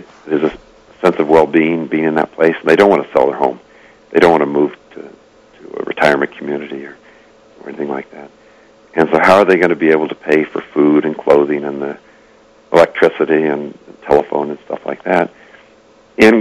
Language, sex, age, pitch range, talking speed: English, male, 50-69, 75-105 Hz, 210 wpm